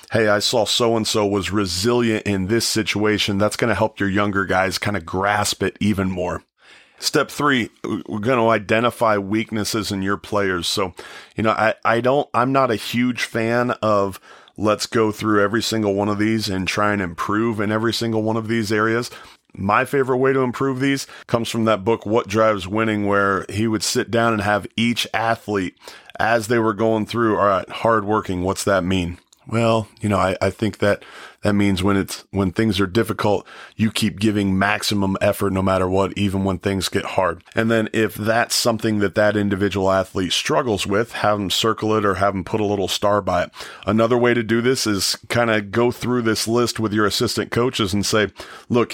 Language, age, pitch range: English, 30-49, 100-115 Hz